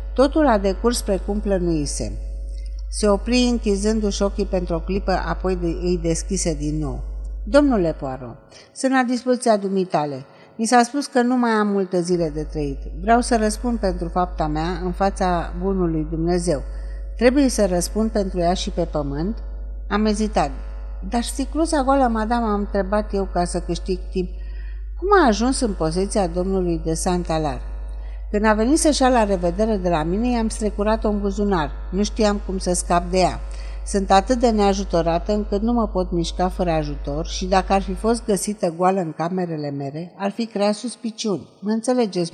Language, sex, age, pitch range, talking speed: Romanian, female, 60-79, 165-220 Hz, 175 wpm